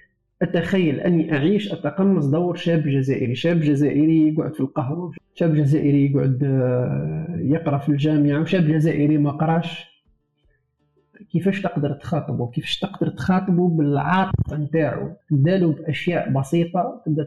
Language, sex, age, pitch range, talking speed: Arabic, male, 50-69, 145-185 Hz, 120 wpm